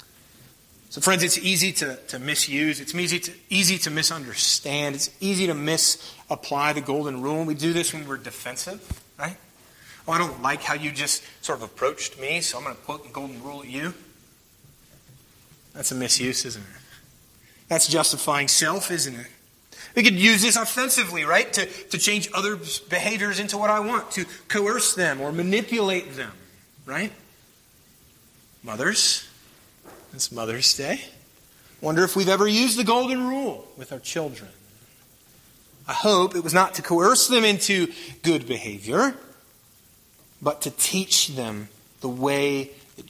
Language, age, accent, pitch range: English, 30-49, American, 130-185 Hz